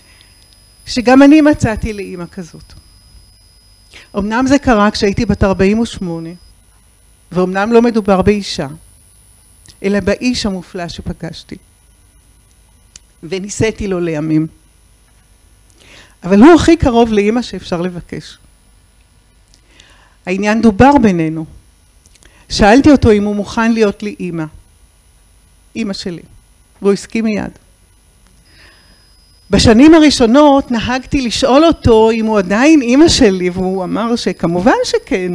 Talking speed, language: 100 wpm, Hebrew